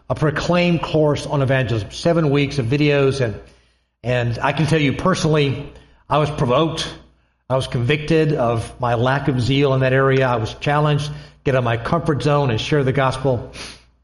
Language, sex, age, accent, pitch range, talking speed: English, male, 50-69, American, 100-165 Hz, 190 wpm